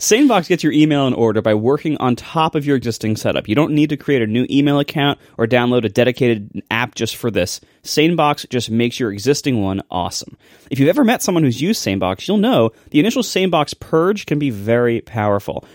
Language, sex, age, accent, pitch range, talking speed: English, male, 30-49, American, 110-155 Hz, 215 wpm